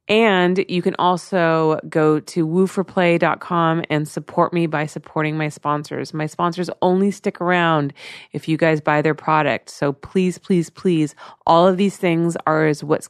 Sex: female